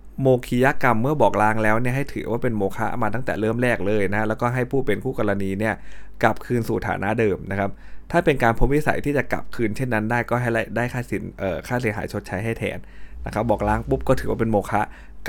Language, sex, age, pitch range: Thai, male, 20-39, 100-120 Hz